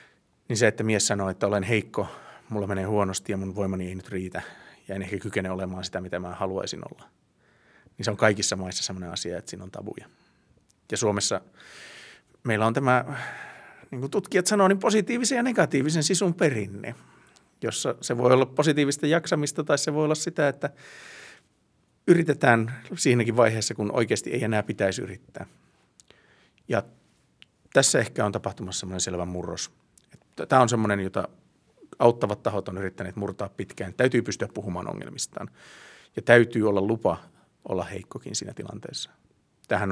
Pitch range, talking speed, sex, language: 95-125 Hz, 160 wpm, male, Finnish